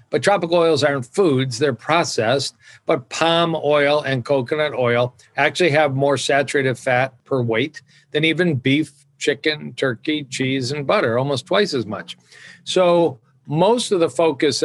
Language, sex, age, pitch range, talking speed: English, male, 50-69, 130-160 Hz, 150 wpm